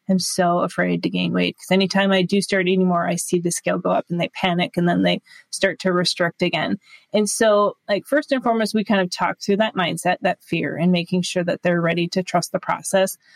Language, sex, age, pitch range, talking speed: English, female, 20-39, 180-215 Hz, 245 wpm